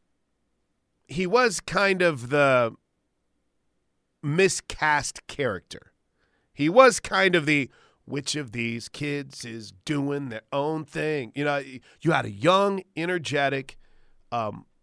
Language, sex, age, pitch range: English, male, 40-59, 140-185 Hz